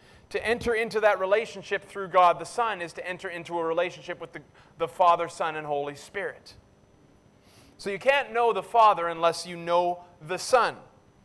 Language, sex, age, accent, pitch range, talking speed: English, male, 30-49, American, 130-195 Hz, 180 wpm